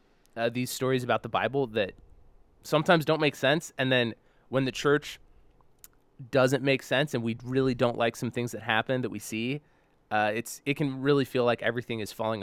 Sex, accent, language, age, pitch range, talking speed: male, American, English, 20-39, 105-130 Hz, 200 wpm